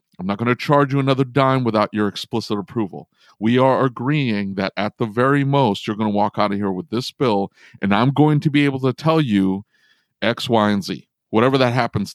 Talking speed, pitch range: 225 wpm, 100-135 Hz